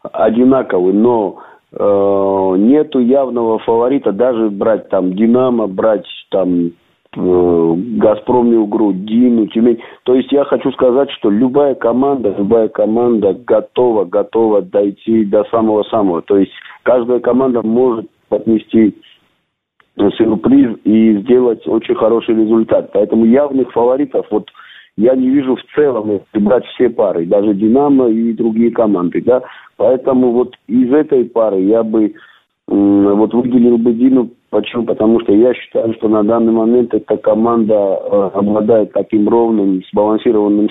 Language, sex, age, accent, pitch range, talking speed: Russian, male, 50-69, native, 105-120 Hz, 135 wpm